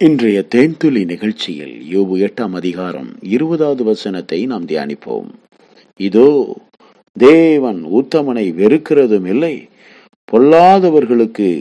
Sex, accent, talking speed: male, native, 85 wpm